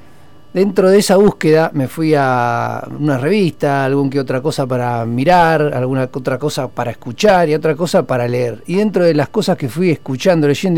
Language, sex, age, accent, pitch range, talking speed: Spanish, male, 50-69, Argentinian, 140-185 Hz, 195 wpm